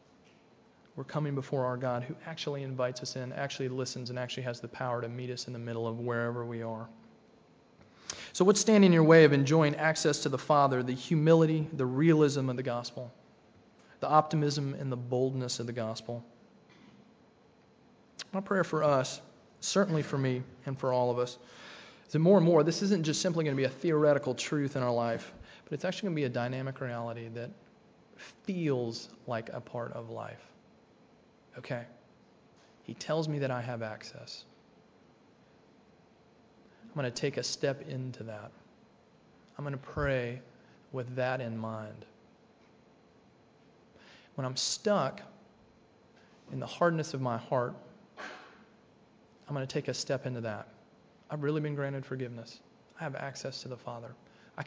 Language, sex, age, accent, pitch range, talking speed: English, male, 30-49, American, 120-150 Hz, 170 wpm